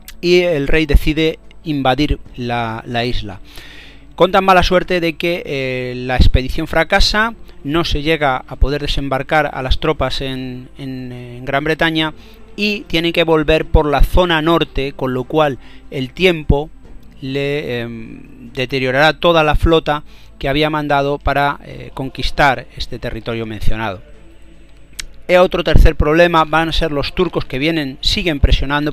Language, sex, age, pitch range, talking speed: Spanish, male, 40-59, 135-165 Hz, 150 wpm